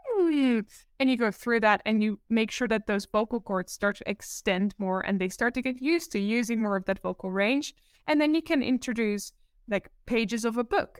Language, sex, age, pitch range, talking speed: English, female, 10-29, 205-260 Hz, 220 wpm